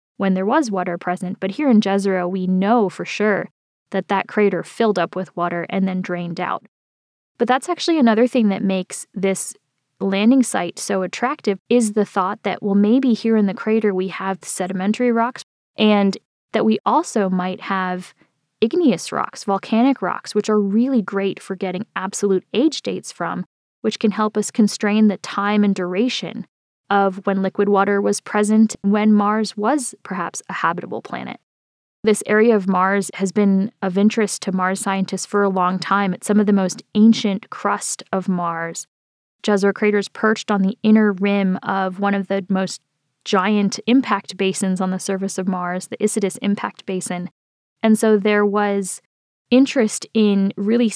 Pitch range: 190-220 Hz